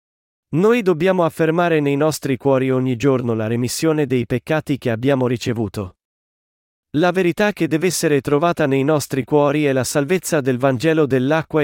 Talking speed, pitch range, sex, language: 155 wpm, 125-160 Hz, male, Italian